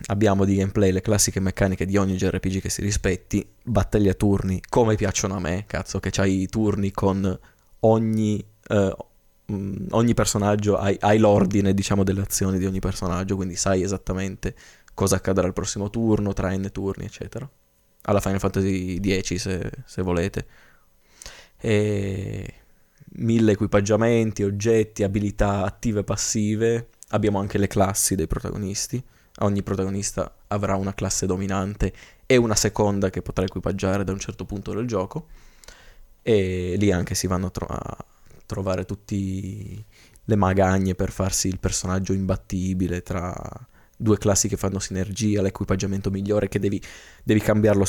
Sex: male